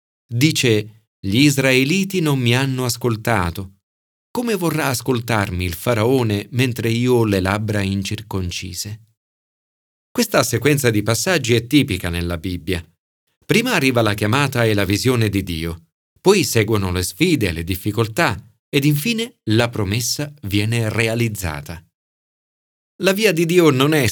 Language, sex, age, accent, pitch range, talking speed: Italian, male, 40-59, native, 95-125 Hz, 135 wpm